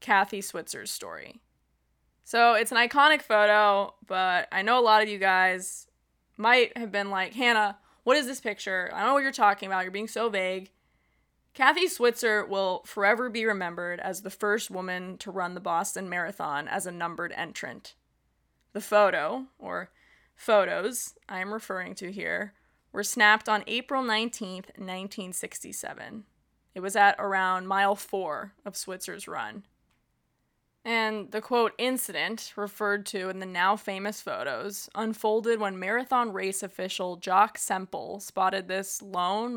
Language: English